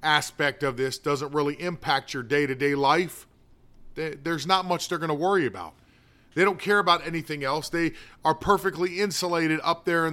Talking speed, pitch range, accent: 180 wpm, 130-165 Hz, American